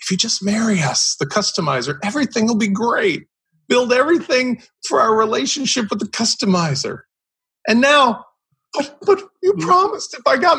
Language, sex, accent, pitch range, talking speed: English, male, American, 185-255 Hz, 160 wpm